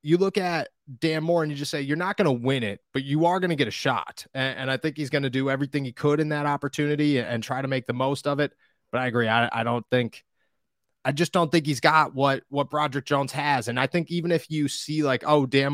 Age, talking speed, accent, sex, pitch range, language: 30-49, 280 wpm, American, male, 130-160 Hz, English